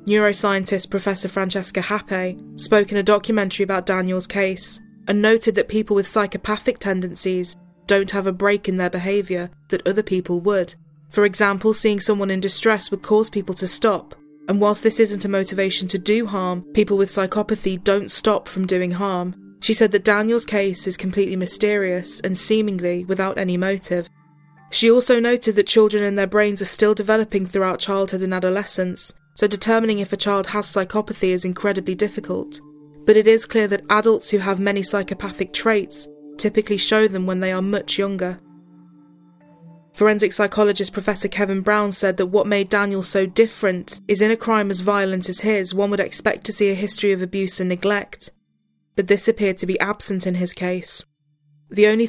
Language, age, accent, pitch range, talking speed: English, 20-39, British, 185-210 Hz, 180 wpm